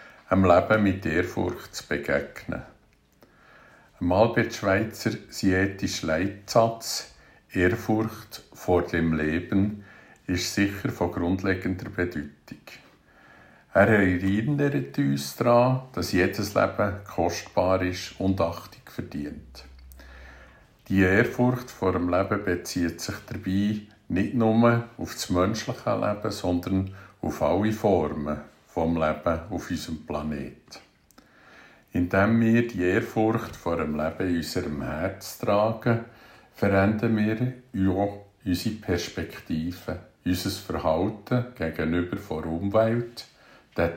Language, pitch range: German, 85-110 Hz